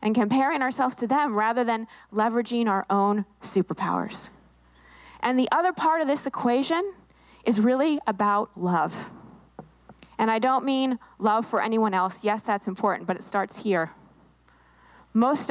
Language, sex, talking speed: English, female, 145 wpm